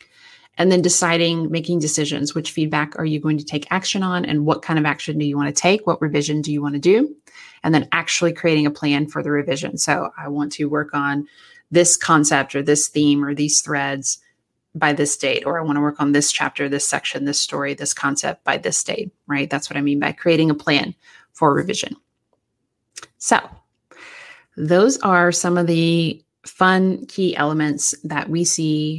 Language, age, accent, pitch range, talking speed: English, 30-49, American, 145-175 Hz, 200 wpm